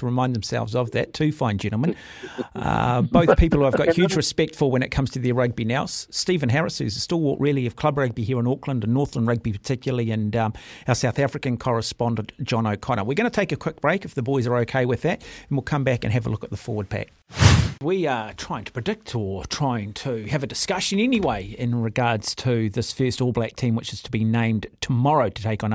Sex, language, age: male, English, 40-59